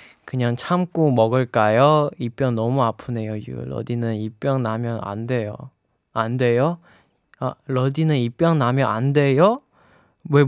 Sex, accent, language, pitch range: male, native, Korean, 120-145 Hz